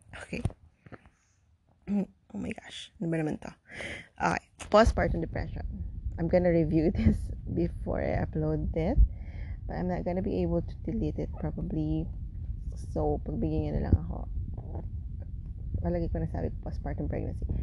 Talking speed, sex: 130 wpm, female